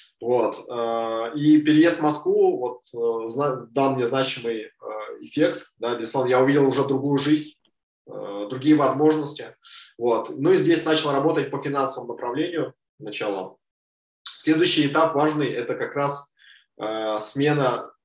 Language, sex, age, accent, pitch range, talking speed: Russian, male, 20-39, native, 115-150 Hz, 115 wpm